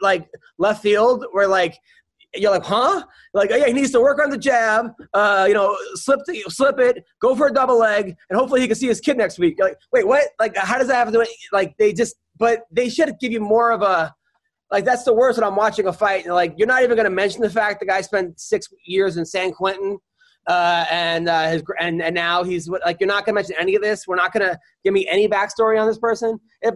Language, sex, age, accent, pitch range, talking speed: English, male, 20-39, American, 180-235 Hz, 270 wpm